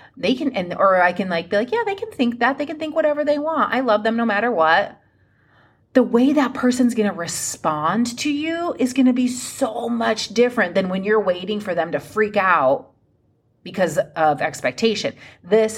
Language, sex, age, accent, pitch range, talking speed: English, female, 30-49, American, 160-240 Hz, 210 wpm